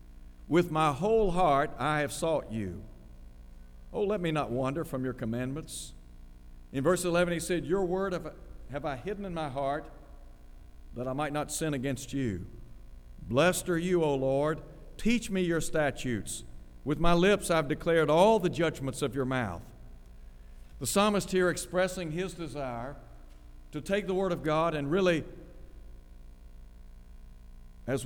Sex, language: male, English